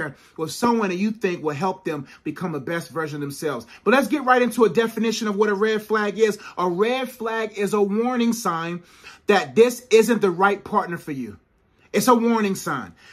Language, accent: English, American